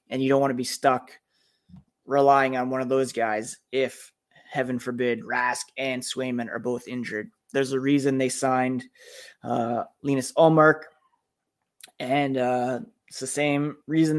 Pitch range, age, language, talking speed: 125-155 Hz, 20-39, English, 150 wpm